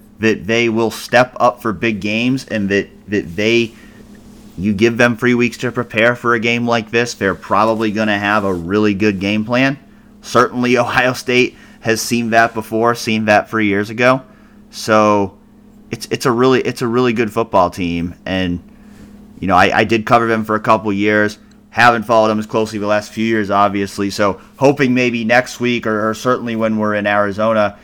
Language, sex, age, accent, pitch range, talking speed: English, male, 30-49, American, 100-125 Hz, 195 wpm